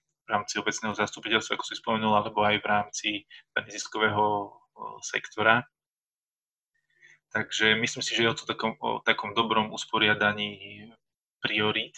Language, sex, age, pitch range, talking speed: Slovak, male, 20-39, 105-115 Hz, 130 wpm